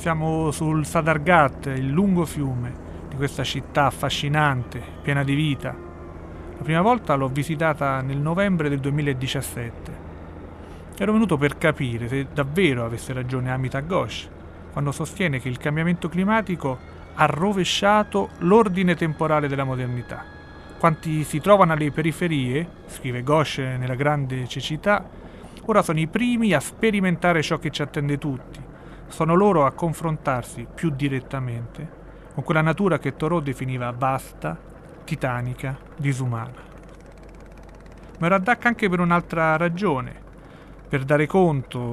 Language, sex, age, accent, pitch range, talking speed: Italian, male, 30-49, native, 130-165 Hz, 130 wpm